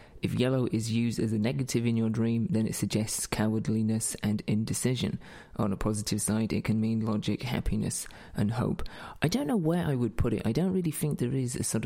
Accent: British